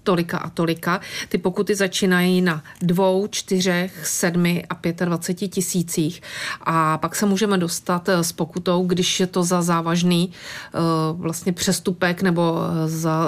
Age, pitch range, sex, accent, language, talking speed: 40-59, 170-190 Hz, female, native, Czech, 140 wpm